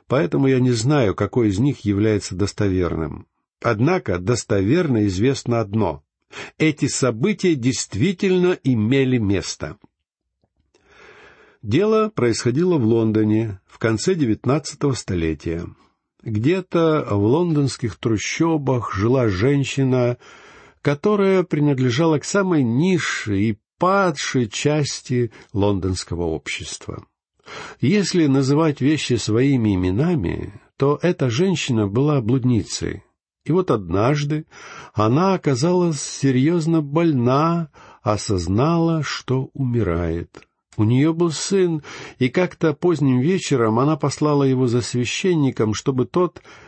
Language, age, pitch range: Russian, 60-79, 110-155 Hz